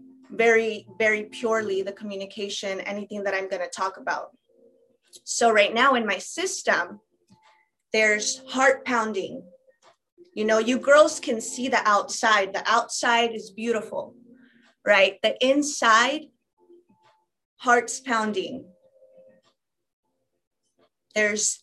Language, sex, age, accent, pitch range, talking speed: English, female, 30-49, American, 205-255 Hz, 110 wpm